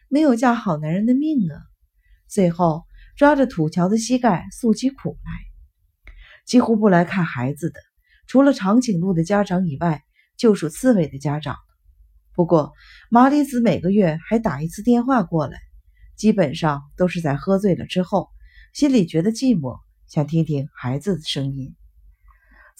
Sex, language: female, Chinese